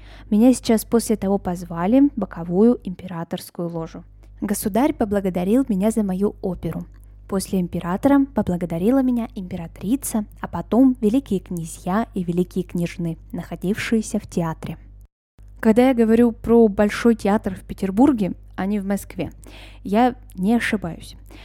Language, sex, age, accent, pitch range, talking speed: Russian, female, 10-29, native, 175-230 Hz, 125 wpm